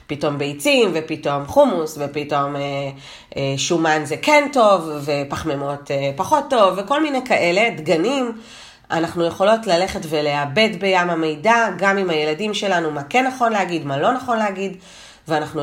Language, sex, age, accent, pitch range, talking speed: Hebrew, female, 30-49, native, 150-215 Hz, 145 wpm